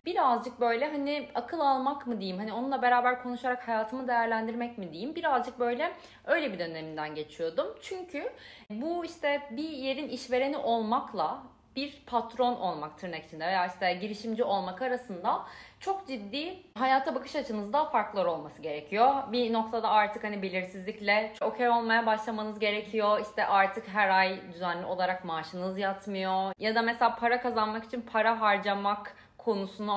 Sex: female